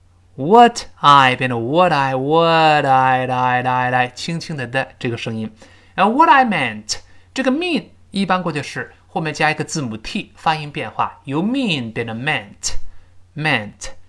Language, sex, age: Chinese, male, 20-39